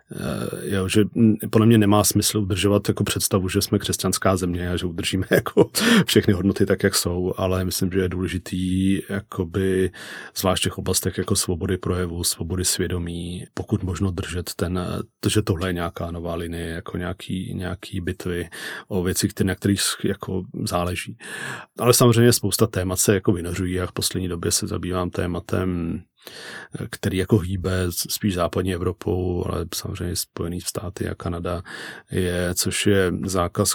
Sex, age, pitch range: male, 40-59, 90-100 Hz